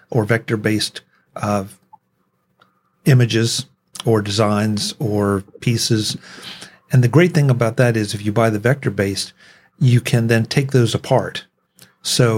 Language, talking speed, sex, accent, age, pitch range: English, 130 wpm, male, American, 50-69, 105-125 Hz